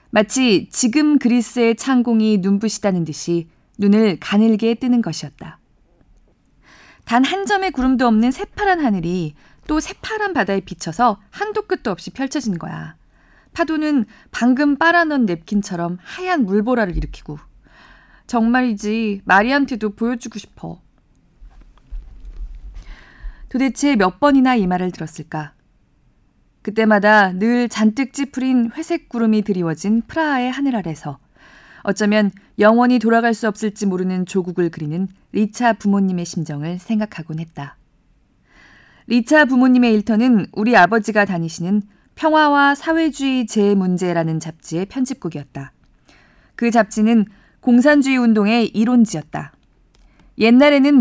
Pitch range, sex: 185-255 Hz, female